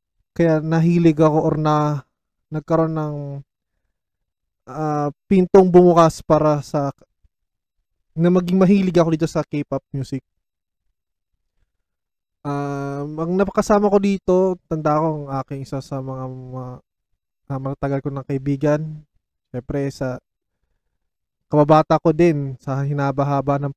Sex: male